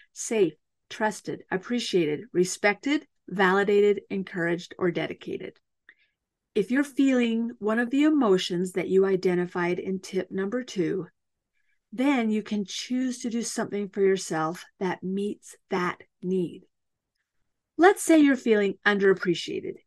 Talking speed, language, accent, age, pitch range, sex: 120 wpm, English, American, 40-59, 185-240 Hz, female